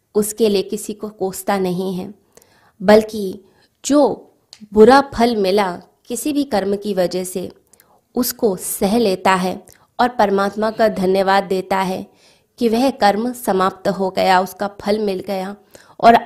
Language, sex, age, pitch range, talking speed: Hindi, female, 20-39, 190-220 Hz, 145 wpm